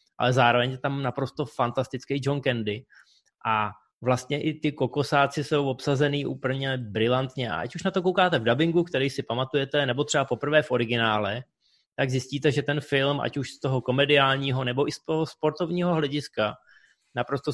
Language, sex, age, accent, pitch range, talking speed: Czech, male, 20-39, native, 115-135 Hz, 170 wpm